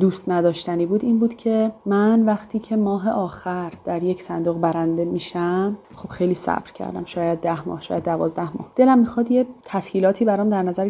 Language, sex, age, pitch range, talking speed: Persian, female, 30-49, 170-205 Hz, 180 wpm